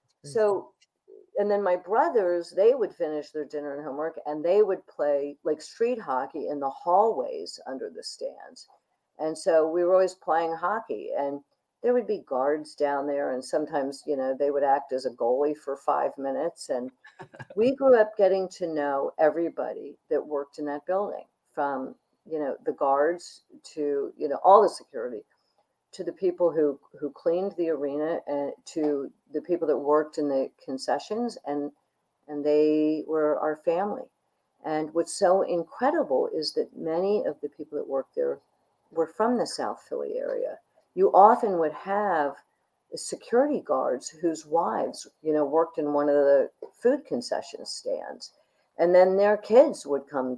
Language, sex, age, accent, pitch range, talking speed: English, female, 50-69, American, 150-225 Hz, 170 wpm